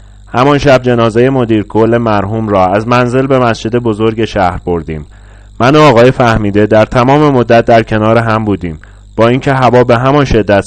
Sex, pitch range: male, 100-125 Hz